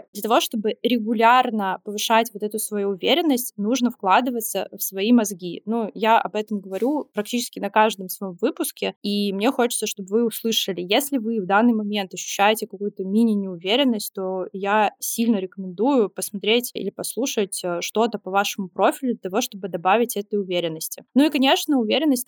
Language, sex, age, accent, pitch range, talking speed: Russian, female, 20-39, native, 205-245 Hz, 160 wpm